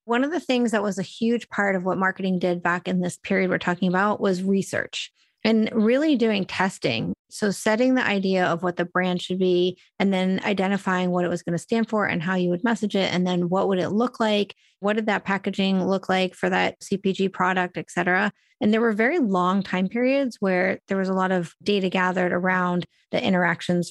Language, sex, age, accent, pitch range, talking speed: English, female, 30-49, American, 180-220 Hz, 225 wpm